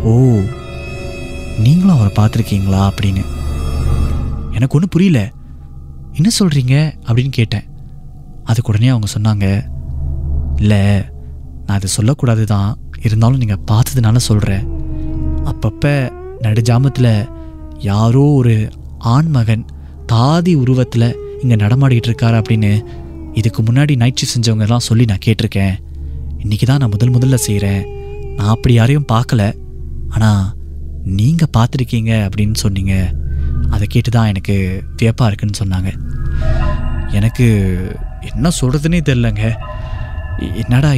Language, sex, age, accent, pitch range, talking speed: Tamil, male, 20-39, native, 75-125 Hz, 100 wpm